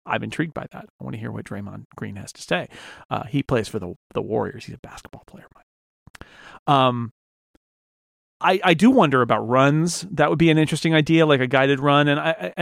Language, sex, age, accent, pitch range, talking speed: English, male, 40-59, American, 115-150 Hz, 215 wpm